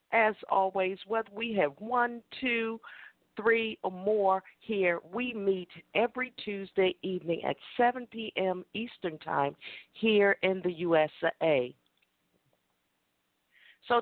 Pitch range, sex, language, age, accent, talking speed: 155-215 Hz, female, English, 50-69, American, 110 wpm